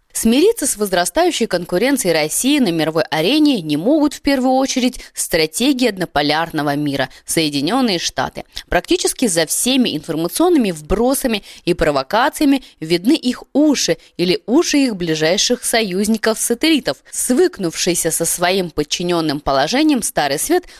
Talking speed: 115 wpm